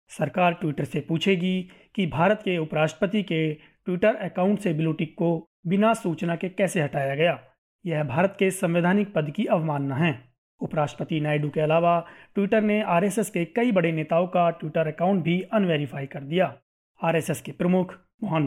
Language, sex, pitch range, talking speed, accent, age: Hindi, male, 160-190 Hz, 160 wpm, native, 30-49